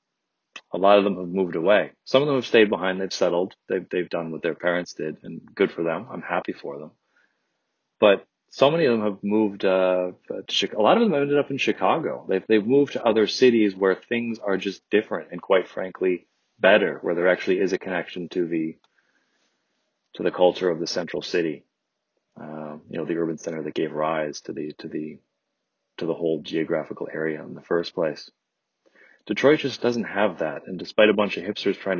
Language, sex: English, male